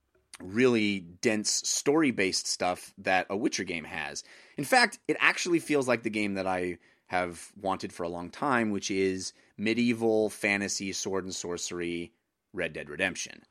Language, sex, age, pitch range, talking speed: English, male, 30-49, 95-115 Hz, 155 wpm